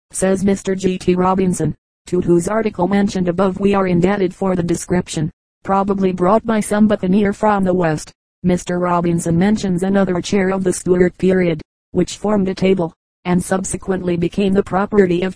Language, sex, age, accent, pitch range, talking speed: English, female, 40-59, American, 180-195 Hz, 165 wpm